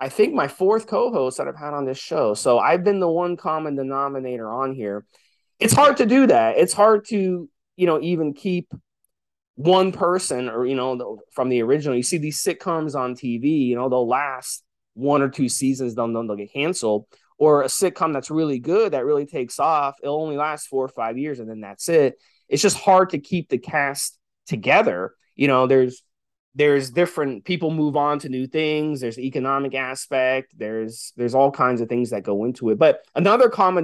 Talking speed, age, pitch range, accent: 205 wpm, 20-39, 125-165 Hz, American